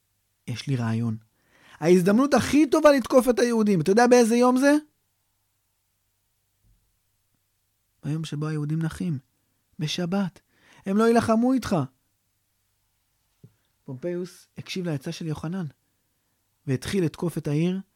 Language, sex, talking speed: Hebrew, male, 105 wpm